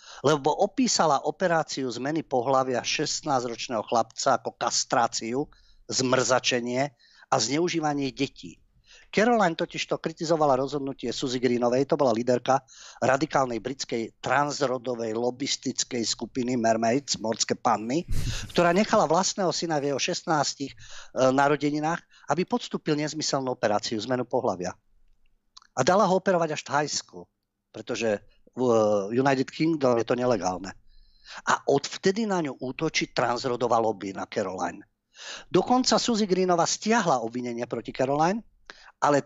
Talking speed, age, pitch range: 120 wpm, 50-69, 125-165 Hz